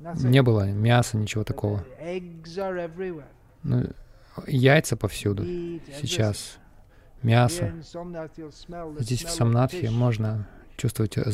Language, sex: Russian, male